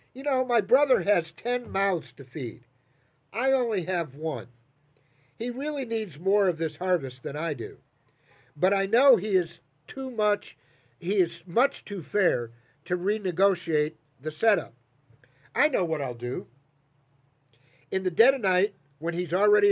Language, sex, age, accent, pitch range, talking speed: English, male, 50-69, American, 135-215 Hz, 160 wpm